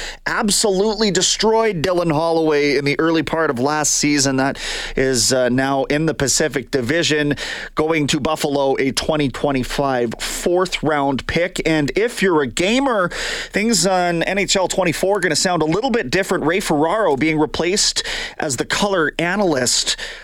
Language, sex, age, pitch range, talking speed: English, male, 30-49, 140-180 Hz, 155 wpm